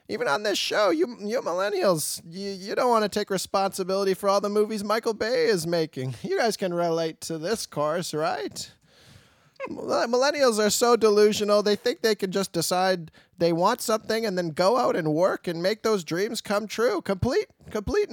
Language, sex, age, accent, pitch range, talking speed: English, male, 20-39, American, 180-225 Hz, 190 wpm